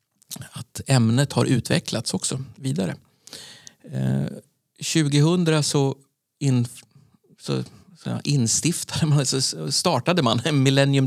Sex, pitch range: male, 110-140 Hz